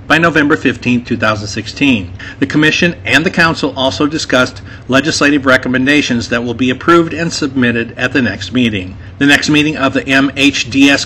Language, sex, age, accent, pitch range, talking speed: English, male, 50-69, American, 120-145 Hz, 155 wpm